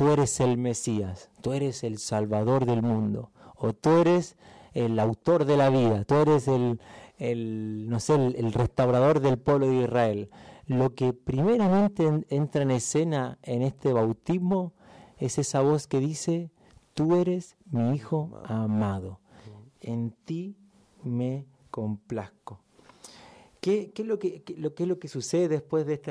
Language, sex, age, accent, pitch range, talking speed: Spanish, male, 40-59, Argentinian, 120-160 Hz, 160 wpm